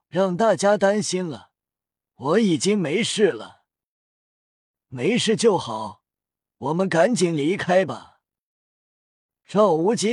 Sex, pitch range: male, 165-220 Hz